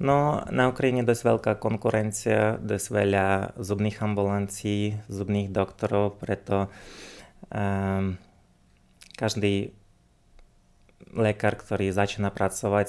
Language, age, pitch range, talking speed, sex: Slovak, 20-39, 100-105 Hz, 95 wpm, male